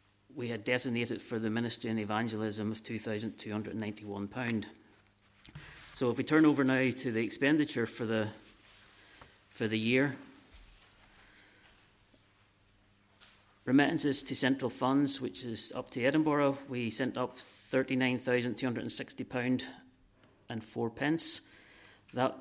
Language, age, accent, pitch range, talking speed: English, 40-59, British, 105-125 Hz, 110 wpm